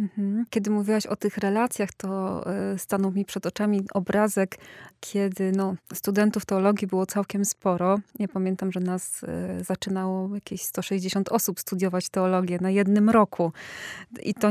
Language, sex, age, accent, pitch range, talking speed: Polish, female, 20-39, native, 185-215 Hz, 140 wpm